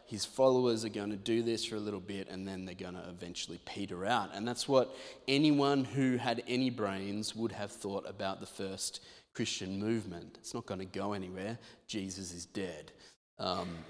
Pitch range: 95-115 Hz